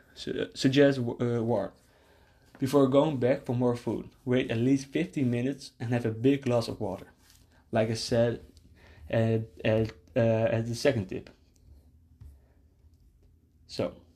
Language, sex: English, male